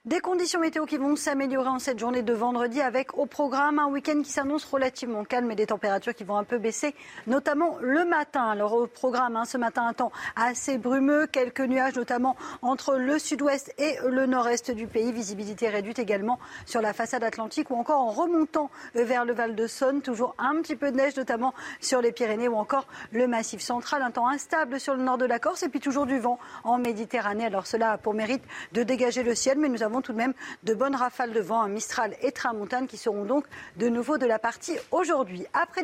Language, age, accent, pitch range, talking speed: French, 40-59, French, 230-275 Hz, 220 wpm